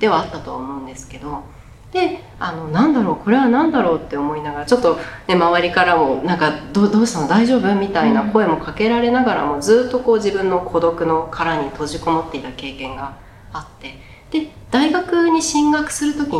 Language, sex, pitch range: Japanese, female, 150-255 Hz